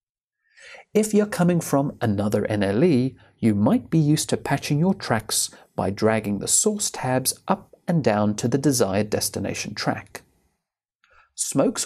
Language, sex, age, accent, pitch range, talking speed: English, male, 40-59, British, 115-175 Hz, 145 wpm